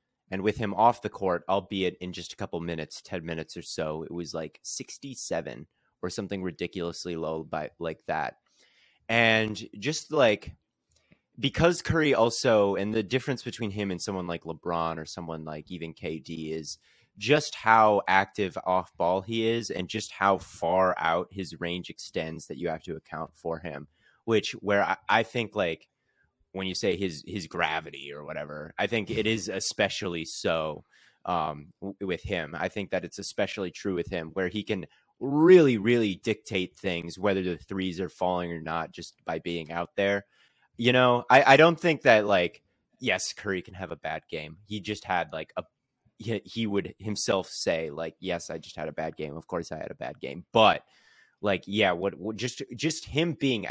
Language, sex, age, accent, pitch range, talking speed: English, male, 30-49, American, 85-110 Hz, 190 wpm